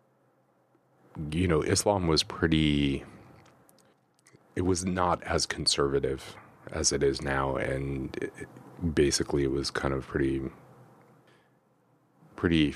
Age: 30-49